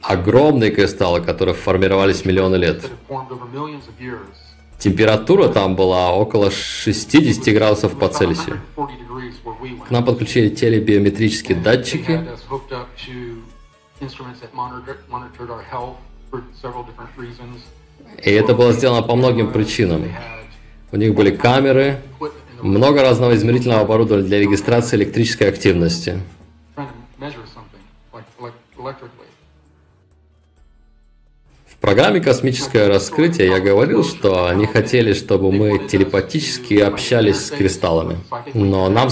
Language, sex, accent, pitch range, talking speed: Russian, male, native, 95-125 Hz, 85 wpm